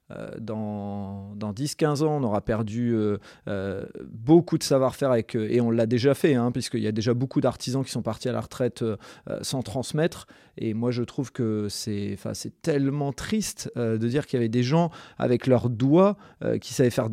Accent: French